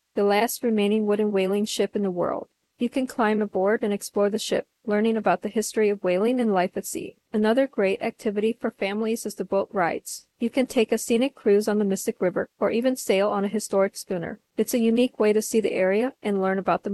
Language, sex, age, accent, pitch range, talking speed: English, female, 40-59, American, 200-230 Hz, 230 wpm